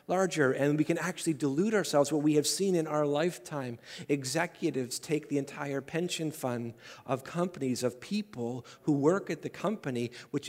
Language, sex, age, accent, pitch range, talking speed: English, male, 40-59, American, 140-175 Hz, 170 wpm